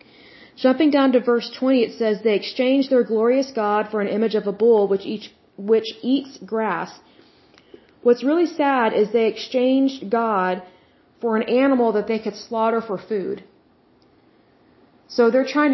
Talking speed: 155 wpm